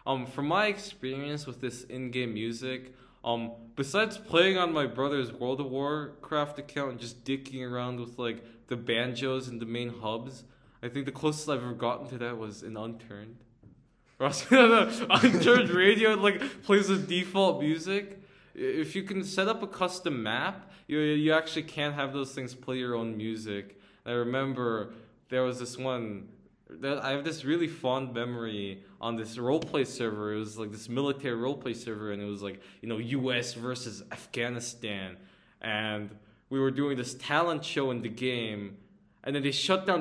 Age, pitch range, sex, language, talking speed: 20-39, 115-155 Hz, male, English, 180 wpm